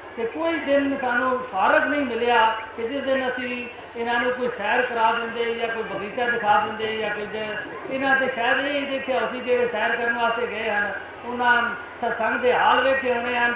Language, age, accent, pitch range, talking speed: Hindi, 40-59, native, 220-260 Hz, 180 wpm